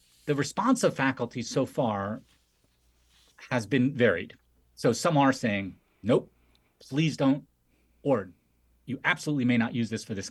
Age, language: 40-59, English